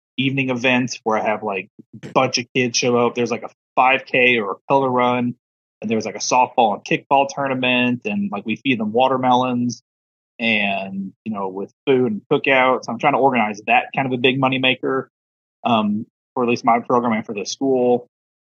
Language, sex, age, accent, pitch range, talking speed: English, male, 30-49, American, 115-155 Hz, 200 wpm